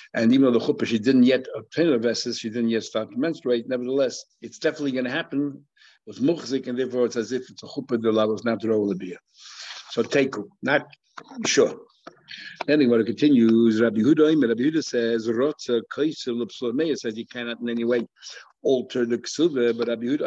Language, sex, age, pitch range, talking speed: English, male, 60-79, 115-140 Hz, 190 wpm